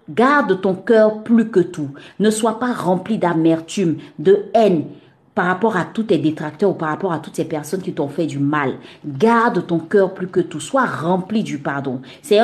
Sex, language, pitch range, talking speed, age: female, French, 170-235 Hz, 205 wpm, 40-59